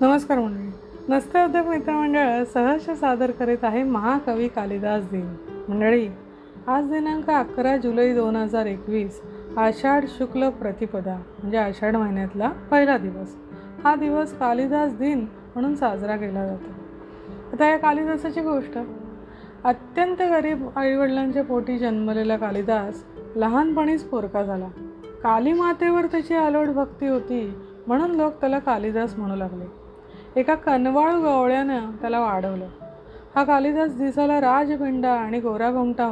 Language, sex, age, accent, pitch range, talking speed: Marathi, female, 30-49, native, 215-285 Hz, 115 wpm